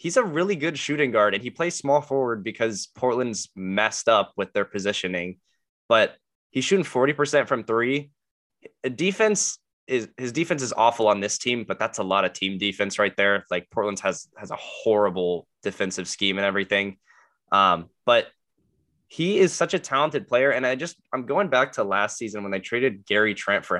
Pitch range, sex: 100-135 Hz, male